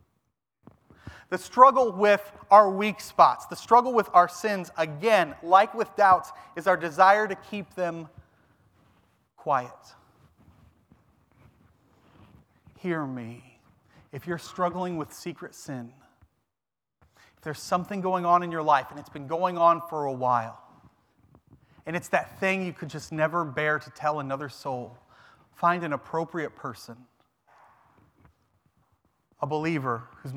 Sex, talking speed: male, 130 wpm